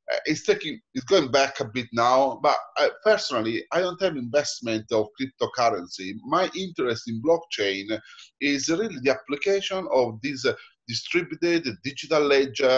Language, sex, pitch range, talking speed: English, male, 110-155 Hz, 140 wpm